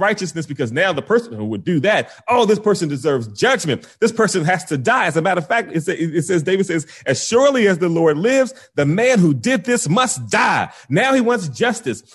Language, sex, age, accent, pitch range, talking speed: English, male, 30-49, American, 165-240 Hz, 225 wpm